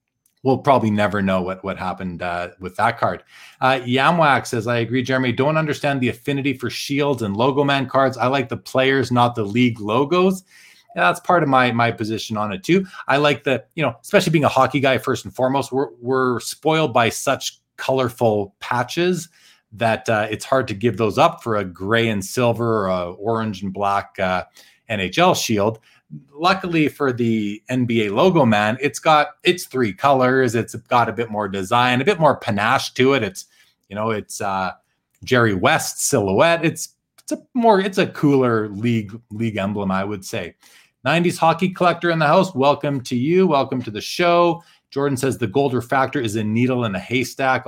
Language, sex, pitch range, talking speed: English, male, 110-145 Hz, 190 wpm